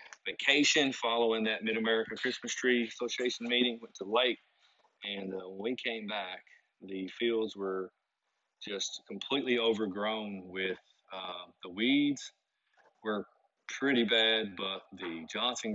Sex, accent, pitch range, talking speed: male, American, 100-120 Hz, 130 wpm